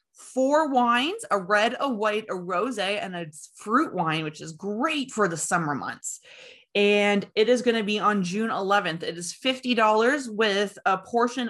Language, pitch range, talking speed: English, 185-245 Hz, 175 wpm